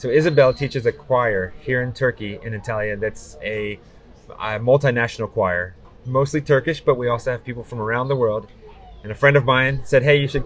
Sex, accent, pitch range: male, American, 110-140 Hz